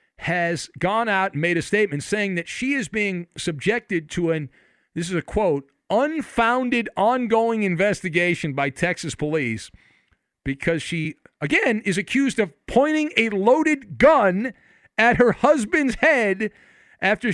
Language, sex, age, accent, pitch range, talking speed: English, male, 50-69, American, 130-205 Hz, 140 wpm